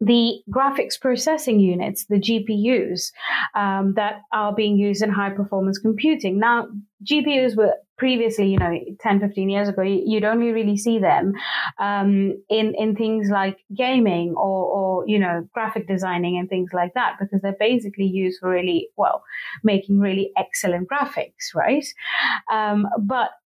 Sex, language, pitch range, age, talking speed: female, English, 190-225 Hz, 30-49, 155 wpm